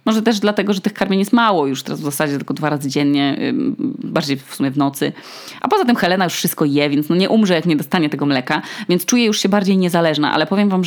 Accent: native